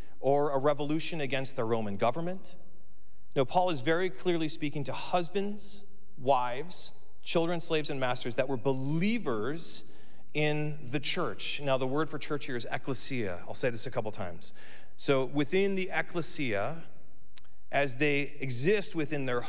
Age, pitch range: 40-59, 120-160 Hz